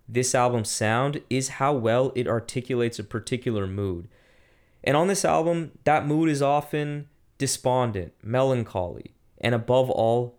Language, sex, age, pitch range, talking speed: English, male, 20-39, 105-130 Hz, 140 wpm